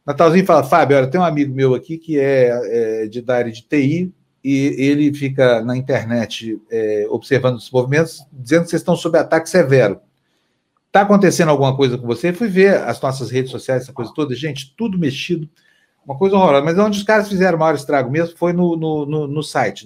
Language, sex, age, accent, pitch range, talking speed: Portuguese, male, 40-59, Brazilian, 130-170 Hz, 210 wpm